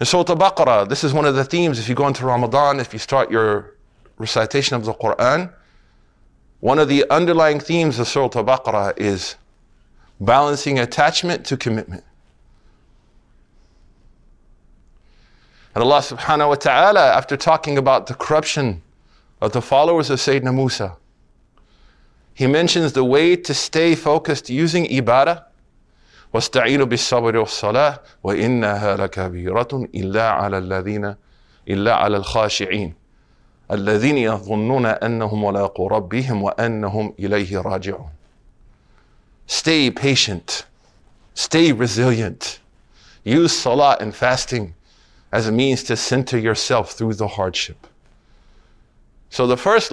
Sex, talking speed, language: male, 95 wpm, English